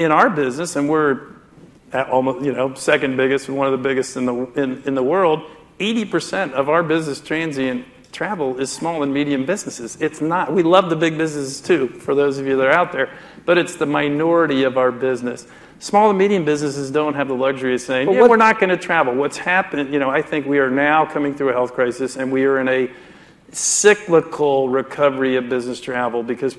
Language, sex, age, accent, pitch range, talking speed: English, male, 50-69, American, 130-160 Hz, 220 wpm